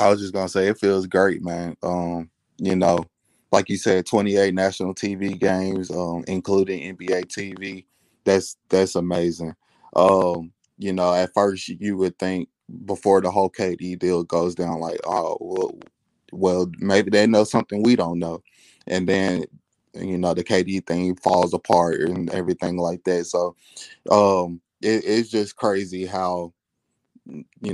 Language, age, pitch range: English, 20-39, 90-95 Hz